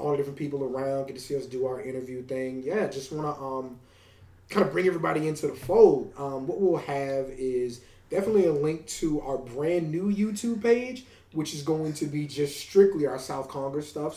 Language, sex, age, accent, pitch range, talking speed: English, male, 20-39, American, 125-155 Hz, 210 wpm